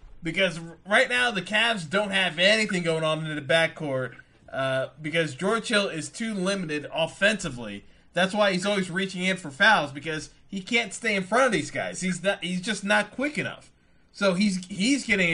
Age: 20-39